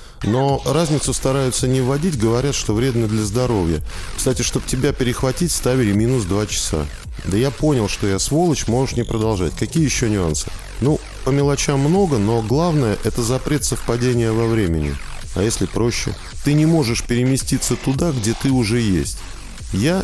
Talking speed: 160 wpm